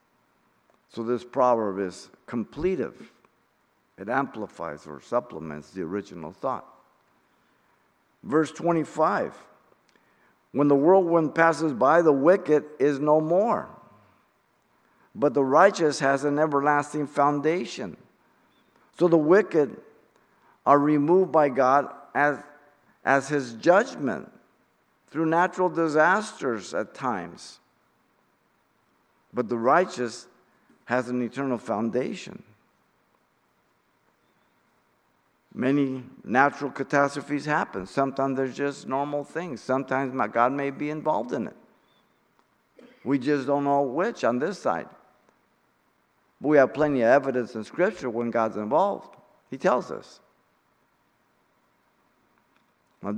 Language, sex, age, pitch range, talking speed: English, male, 50-69, 125-150 Hz, 105 wpm